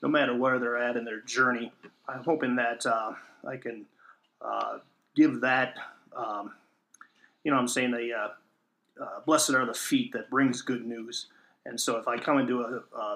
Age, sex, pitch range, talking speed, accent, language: 40-59, male, 120-135 Hz, 190 wpm, American, English